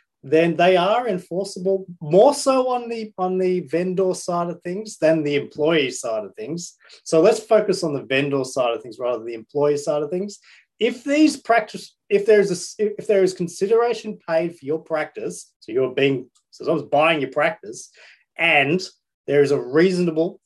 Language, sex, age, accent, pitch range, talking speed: English, male, 30-49, Australian, 145-195 Hz, 190 wpm